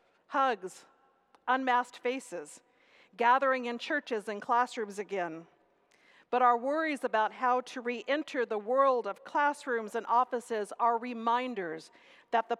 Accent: American